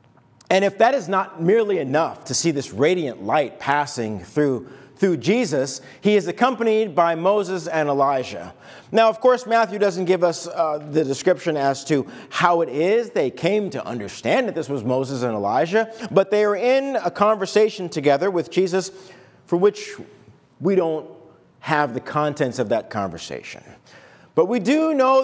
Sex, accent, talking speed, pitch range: male, American, 170 wpm, 150-220 Hz